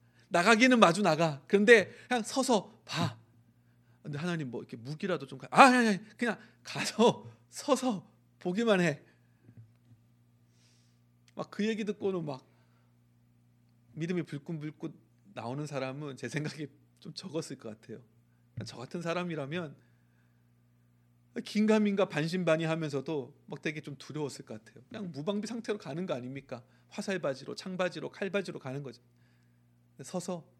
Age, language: 40-59, Korean